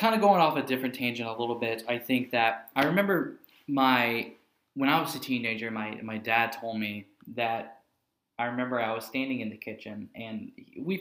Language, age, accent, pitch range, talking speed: English, 10-29, American, 110-125 Hz, 200 wpm